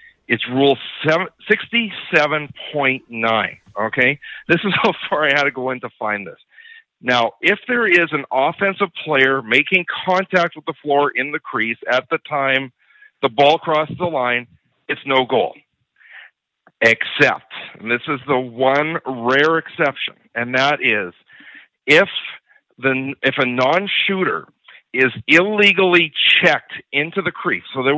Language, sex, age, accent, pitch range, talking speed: English, male, 50-69, American, 130-170 Hz, 145 wpm